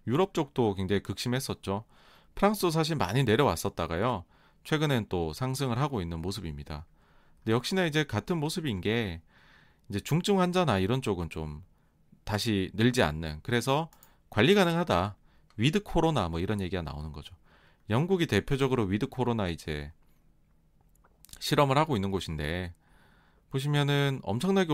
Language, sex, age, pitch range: Korean, male, 40-59, 90-135 Hz